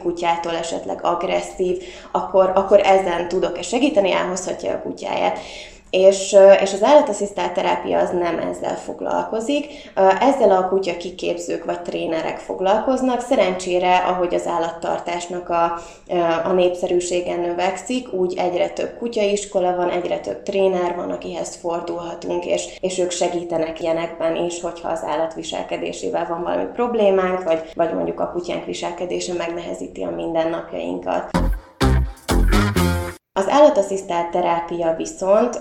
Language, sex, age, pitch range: Hungarian, female, 20-39, 170-195 Hz